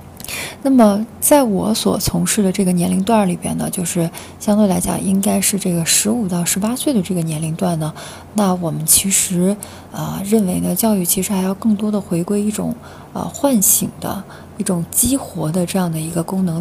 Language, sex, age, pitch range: Chinese, female, 20-39, 175-220 Hz